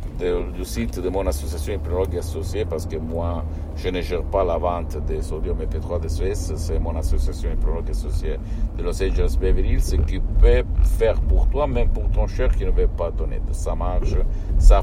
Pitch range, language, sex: 80-95 Hz, Italian, male